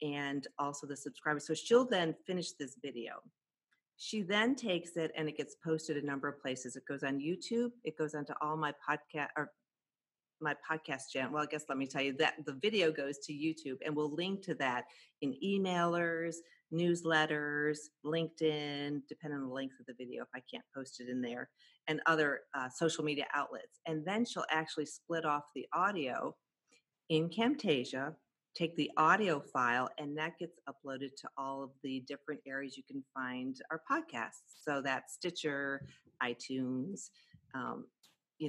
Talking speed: 175 wpm